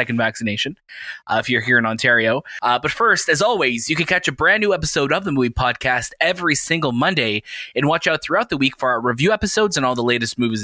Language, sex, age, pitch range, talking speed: English, male, 20-39, 125-170 Hz, 230 wpm